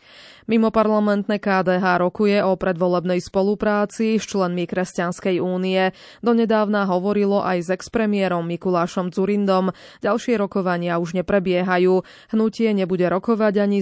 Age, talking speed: 20-39, 115 wpm